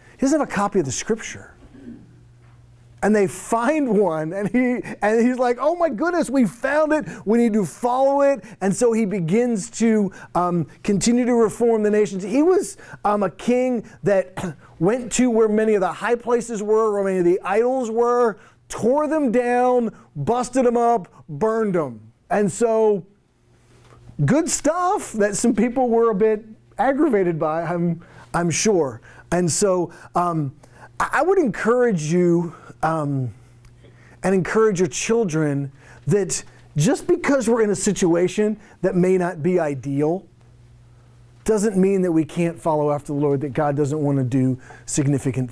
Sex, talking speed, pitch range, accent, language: male, 160 wpm, 150-225 Hz, American, English